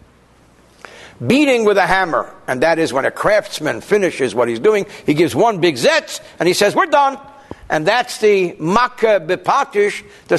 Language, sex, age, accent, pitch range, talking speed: English, male, 60-79, American, 165-220 Hz, 175 wpm